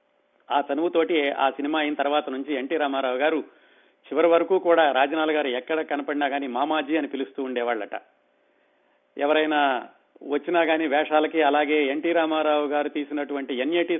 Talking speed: 135 wpm